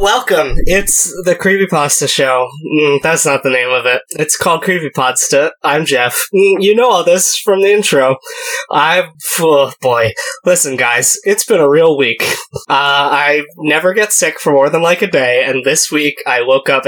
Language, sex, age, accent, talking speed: English, male, 20-39, American, 185 wpm